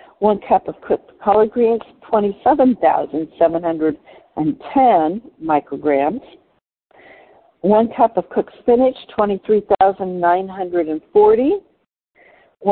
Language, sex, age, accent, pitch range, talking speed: English, female, 60-79, American, 170-250 Hz, 65 wpm